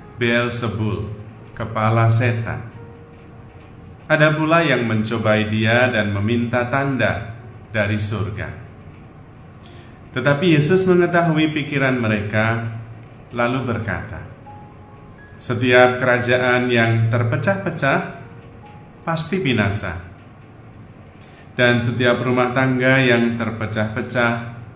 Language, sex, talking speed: Indonesian, male, 80 wpm